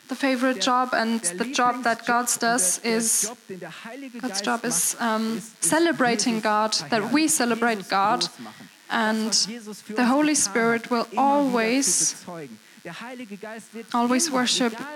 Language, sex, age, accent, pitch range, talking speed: German, female, 10-29, German, 215-255 Hz, 110 wpm